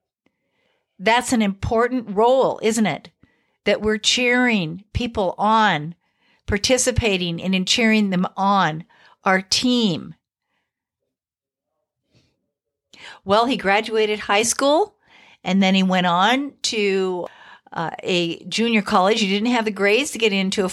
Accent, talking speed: American, 125 wpm